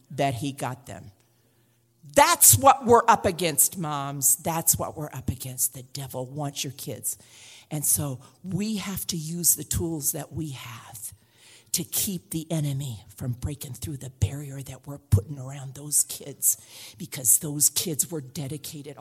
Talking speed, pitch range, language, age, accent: 160 wpm, 125-200 Hz, English, 50-69, American